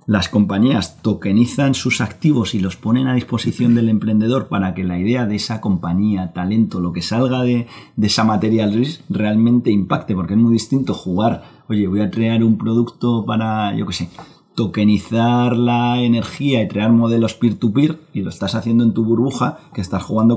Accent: Spanish